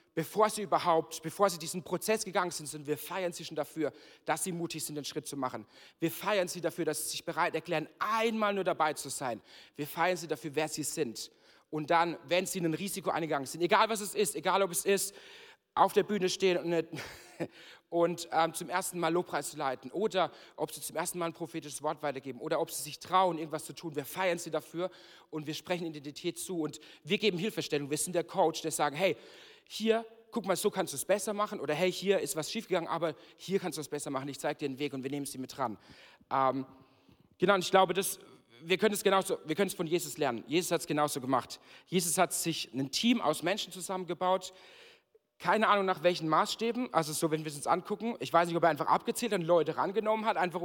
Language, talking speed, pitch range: German, 230 wpm, 155-190 Hz